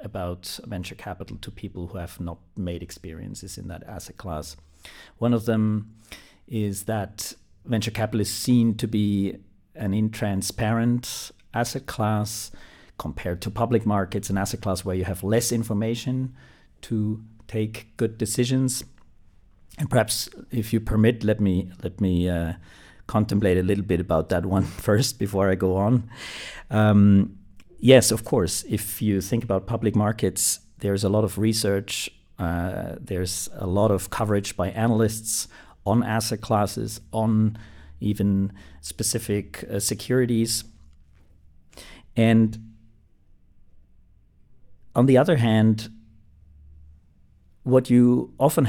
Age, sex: 50-69, male